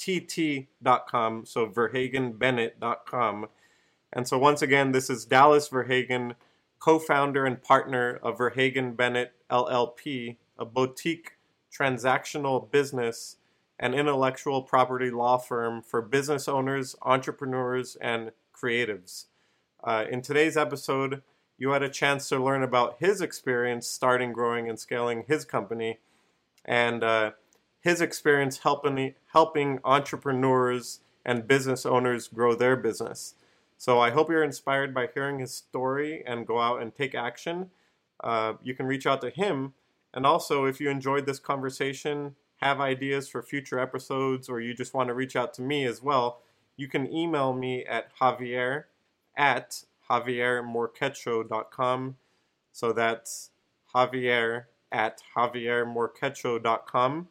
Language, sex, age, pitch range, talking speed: English, male, 30-49, 120-140 Hz, 130 wpm